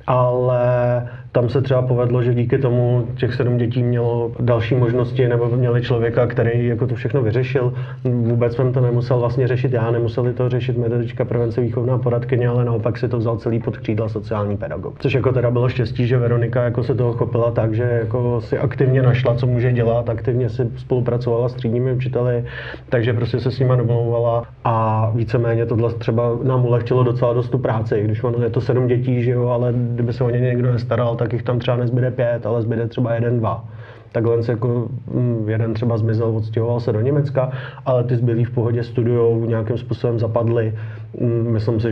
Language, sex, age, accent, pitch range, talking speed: Czech, male, 30-49, native, 115-125 Hz, 195 wpm